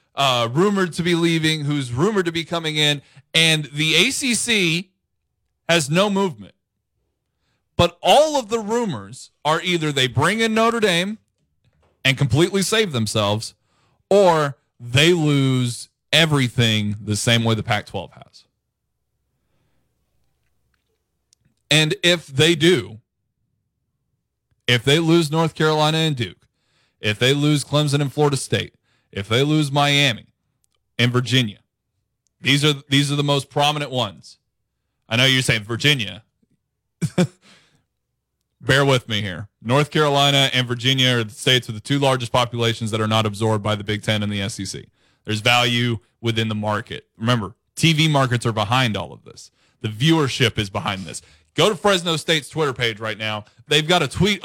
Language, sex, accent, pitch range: English, male, American, 115-160 Hz